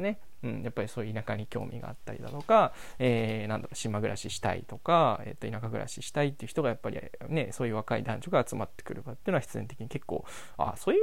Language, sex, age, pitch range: Japanese, male, 20-39, 110-140 Hz